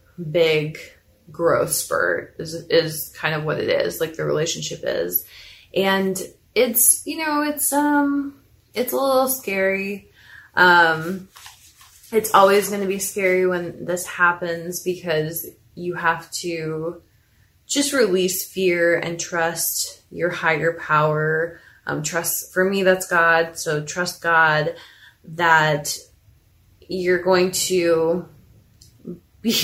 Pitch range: 165-200 Hz